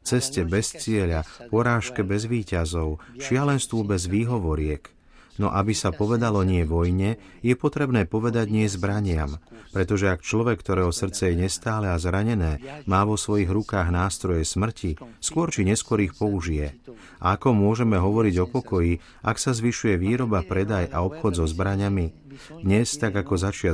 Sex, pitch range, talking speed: male, 90-115 Hz, 150 wpm